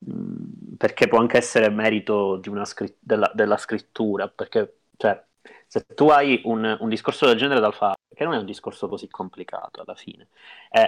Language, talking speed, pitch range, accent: Italian, 180 wpm, 105-135 Hz, native